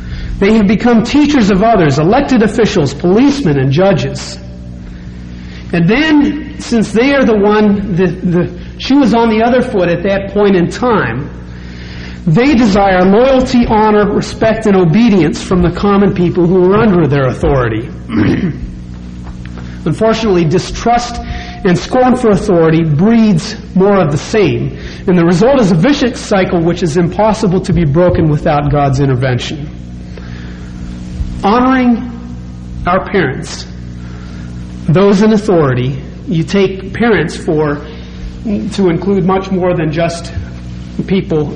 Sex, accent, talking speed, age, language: male, American, 130 wpm, 40-59, English